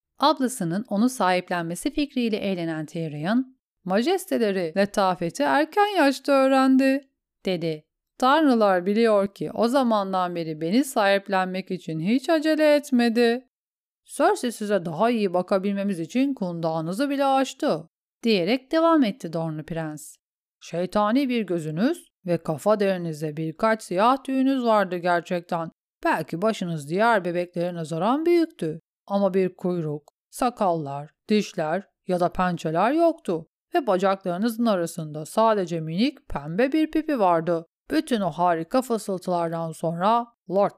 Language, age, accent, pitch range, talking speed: Turkish, 40-59, native, 175-255 Hz, 120 wpm